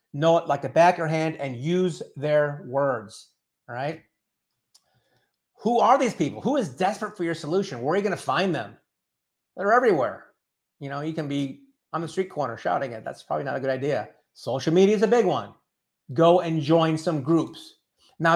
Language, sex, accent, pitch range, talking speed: English, male, American, 135-180 Hz, 195 wpm